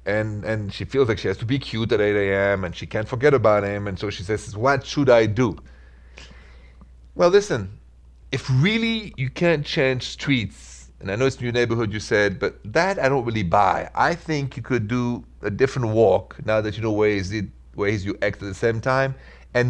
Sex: male